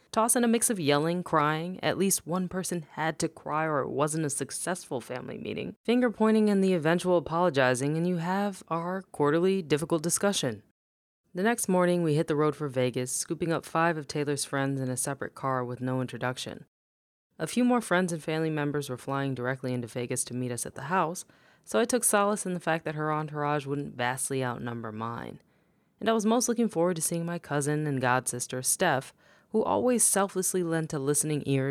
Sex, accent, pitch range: female, American, 135-185 Hz